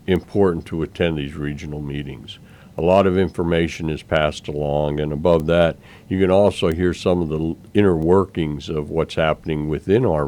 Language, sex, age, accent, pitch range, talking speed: English, male, 60-79, American, 75-90 Hz, 175 wpm